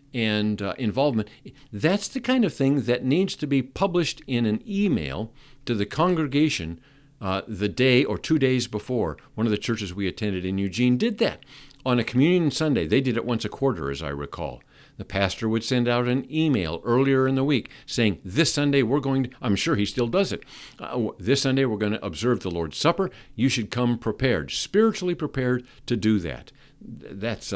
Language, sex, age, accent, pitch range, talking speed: English, male, 50-69, American, 115-155 Hz, 200 wpm